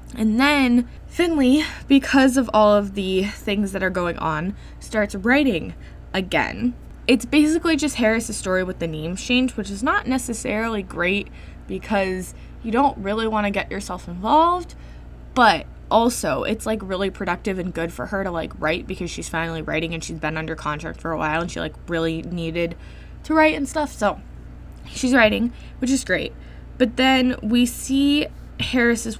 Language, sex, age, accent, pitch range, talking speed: English, female, 10-29, American, 180-260 Hz, 175 wpm